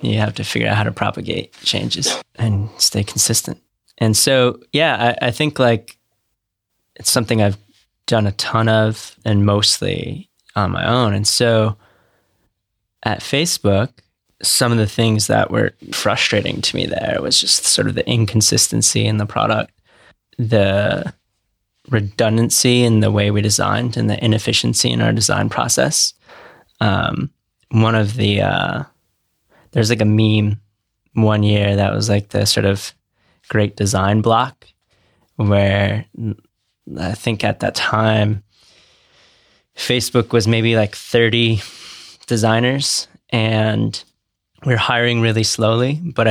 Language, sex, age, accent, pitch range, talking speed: English, male, 20-39, American, 105-120 Hz, 135 wpm